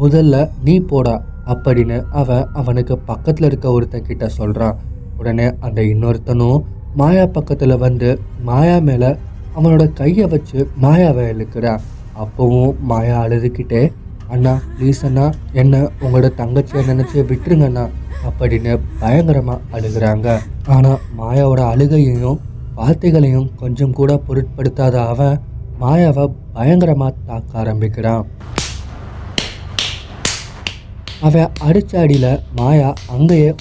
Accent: native